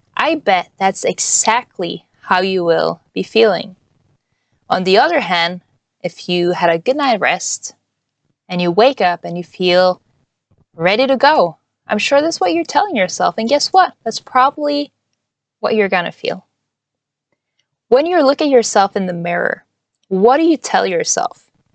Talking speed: 165 wpm